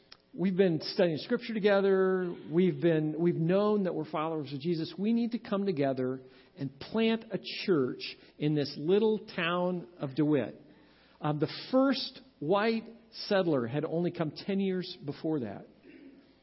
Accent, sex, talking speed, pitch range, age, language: American, male, 150 wpm, 155-200 Hz, 50-69, English